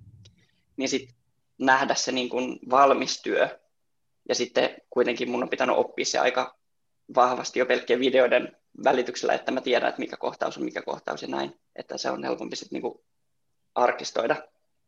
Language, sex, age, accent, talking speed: Finnish, male, 20-39, native, 155 wpm